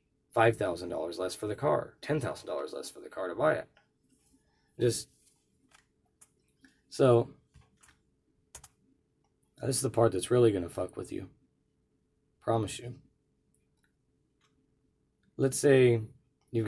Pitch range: 105-130 Hz